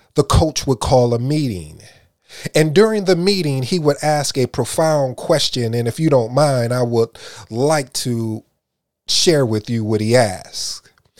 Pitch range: 115-150 Hz